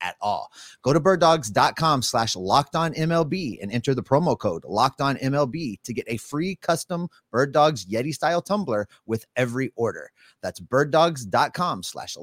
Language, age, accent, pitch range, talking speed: English, 30-49, American, 115-150 Hz, 160 wpm